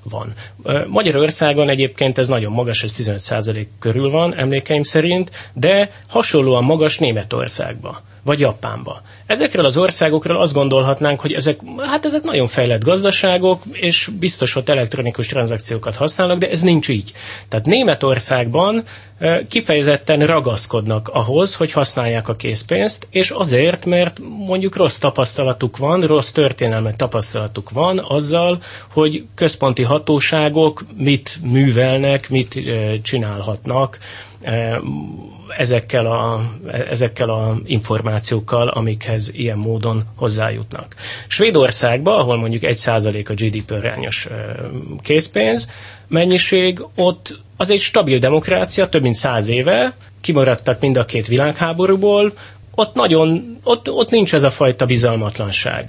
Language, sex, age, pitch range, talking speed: Hungarian, male, 30-49, 110-155 Hz, 115 wpm